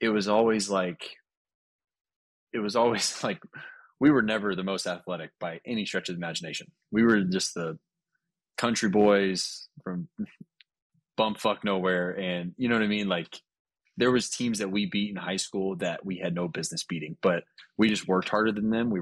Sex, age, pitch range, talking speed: male, 20-39, 90-110 Hz, 190 wpm